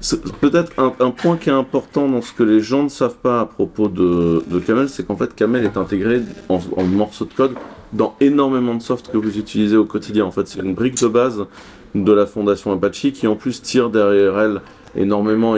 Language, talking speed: English, 225 wpm